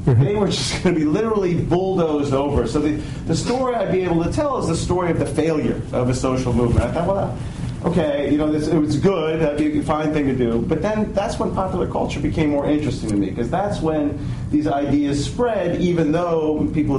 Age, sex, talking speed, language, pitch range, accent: 40-59, male, 235 wpm, English, 125-160 Hz, American